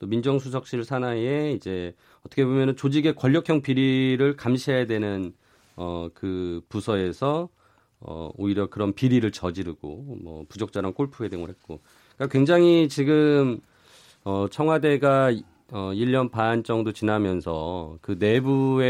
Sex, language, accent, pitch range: male, Korean, native, 90-130 Hz